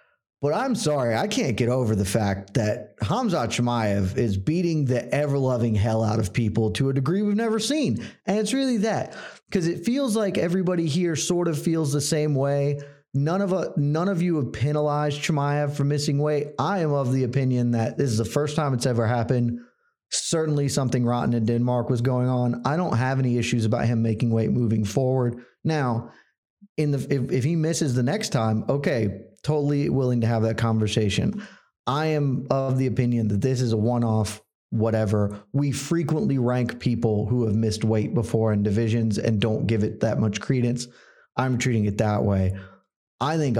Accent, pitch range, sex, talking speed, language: American, 115-150 Hz, male, 195 wpm, English